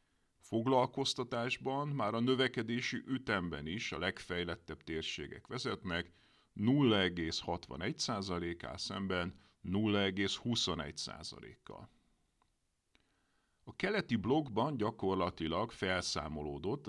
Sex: male